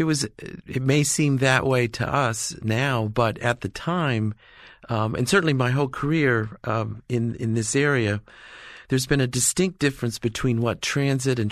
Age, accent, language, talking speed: 40-59, American, English, 175 wpm